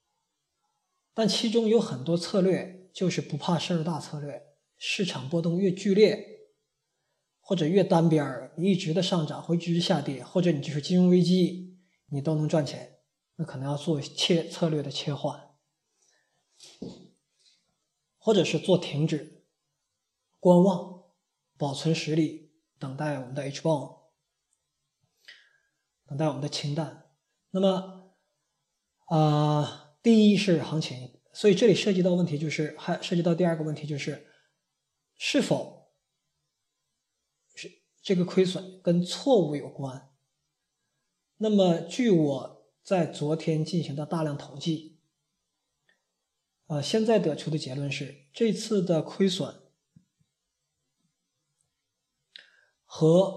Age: 20-39